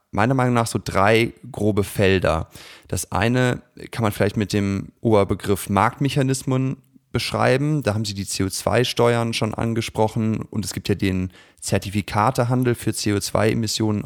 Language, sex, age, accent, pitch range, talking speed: German, male, 30-49, German, 95-115 Hz, 135 wpm